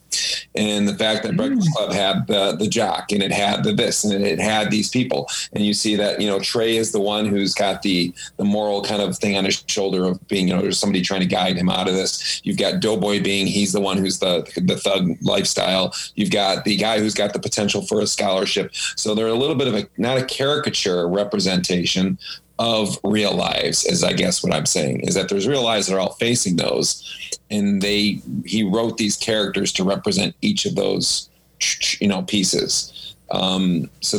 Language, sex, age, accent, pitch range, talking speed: English, male, 40-59, American, 95-105 Hz, 215 wpm